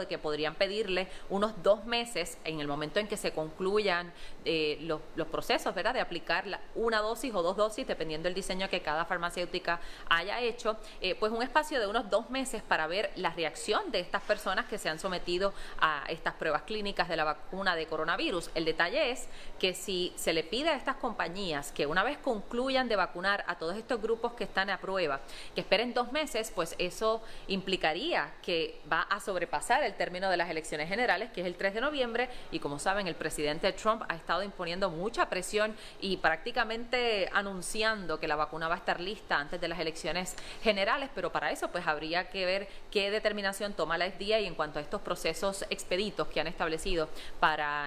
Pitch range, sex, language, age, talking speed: 165-215 Hz, female, English, 30-49, 200 wpm